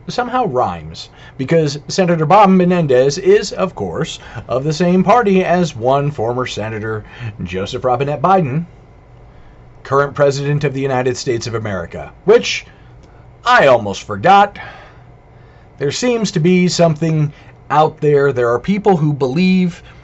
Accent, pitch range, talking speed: American, 115-160 Hz, 130 wpm